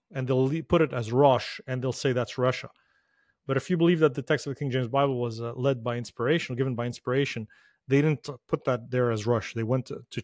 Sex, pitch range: male, 125-150 Hz